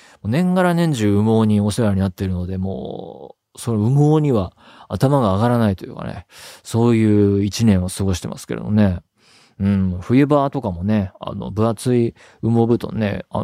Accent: native